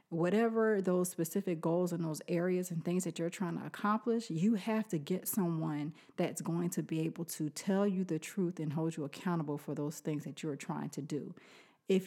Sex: female